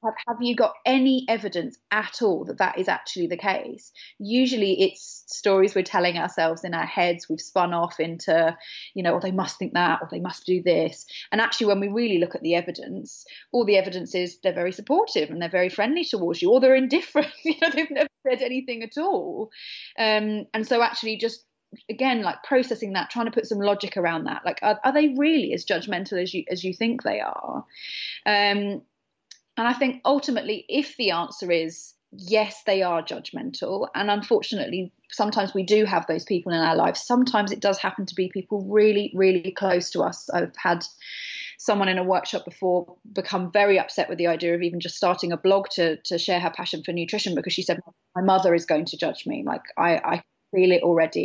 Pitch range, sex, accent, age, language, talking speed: 175-235 Hz, female, British, 30-49, English, 210 wpm